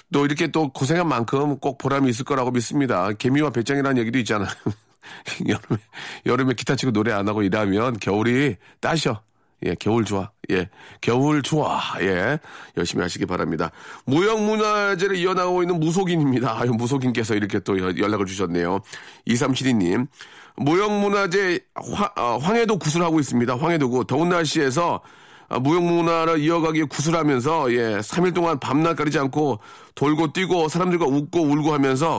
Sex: male